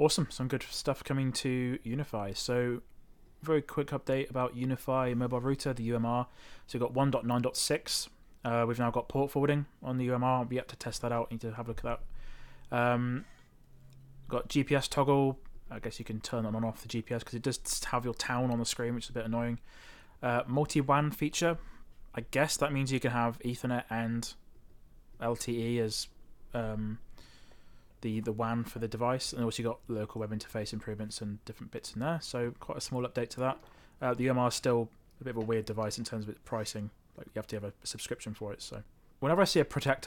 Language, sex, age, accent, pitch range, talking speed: English, male, 20-39, British, 110-130 Hz, 220 wpm